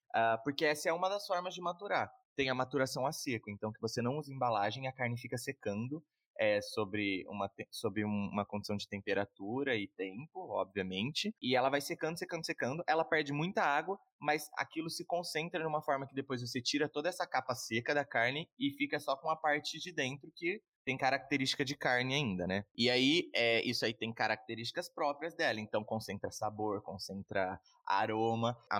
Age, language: 20-39, Portuguese